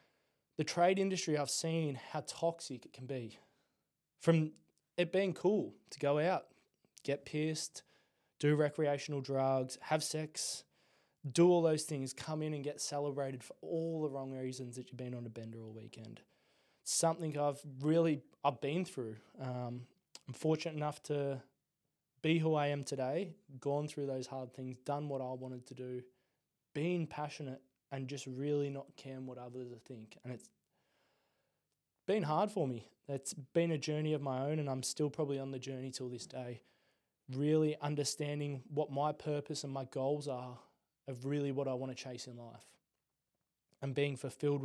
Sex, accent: male, Australian